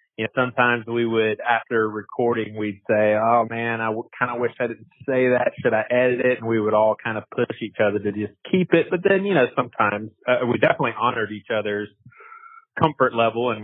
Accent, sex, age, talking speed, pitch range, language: American, male, 30-49, 220 wpm, 105-125 Hz, English